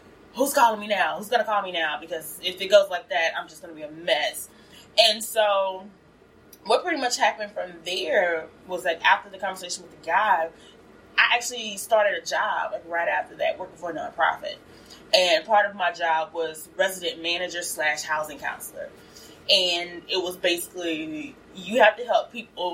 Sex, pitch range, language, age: female, 175-265 Hz, English, 20-39